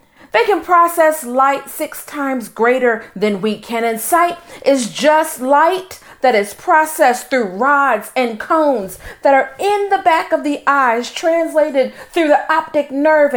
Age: 40-59